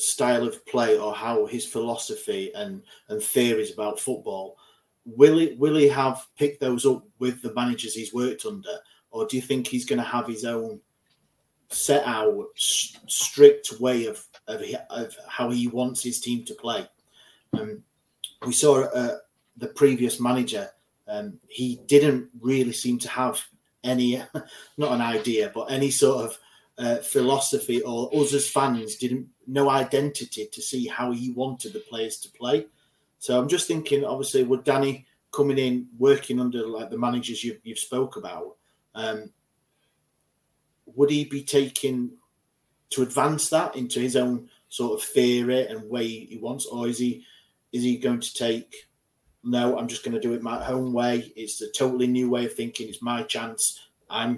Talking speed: 170 wpm